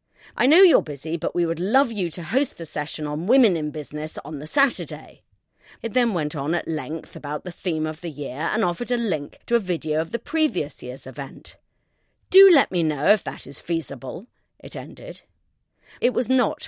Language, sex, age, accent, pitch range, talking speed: English, female, 40-59, British, 155-235 Hz, 205 wpm